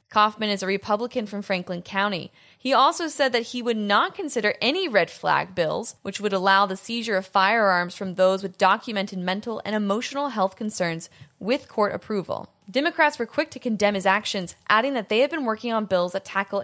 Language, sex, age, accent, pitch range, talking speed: English, female, 20-39, American, 195-240 Hz, 200 wpm